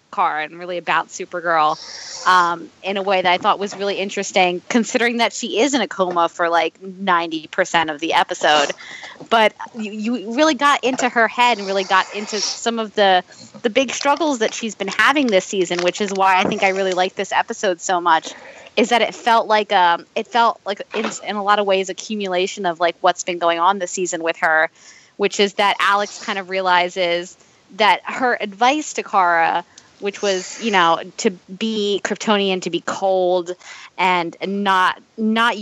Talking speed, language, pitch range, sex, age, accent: 190 wpm, English, 180-220 Hz, female, 20-39, American